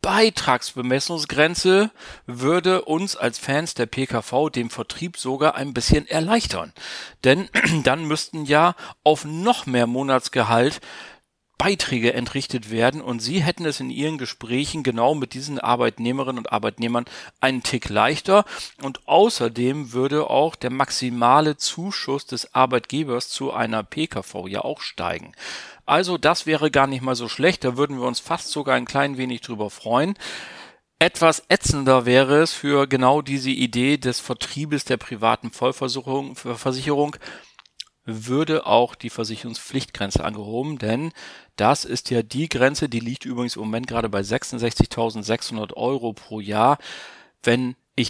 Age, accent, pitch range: 40-59, German, 120-150 Hz